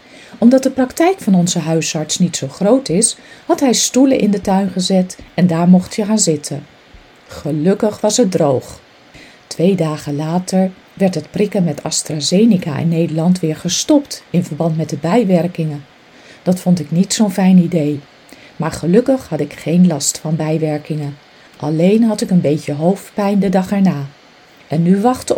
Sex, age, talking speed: female, 40-59, 170 wpm